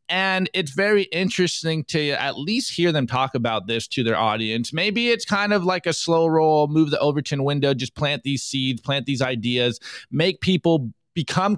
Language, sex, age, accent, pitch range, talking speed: English, male, 20-39, American, 135-180 Hz, 190 wpm